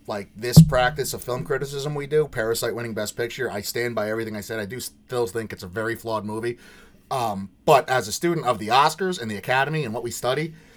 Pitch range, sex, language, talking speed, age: 125-165 Hz, male, English, 235 wpm, 30-49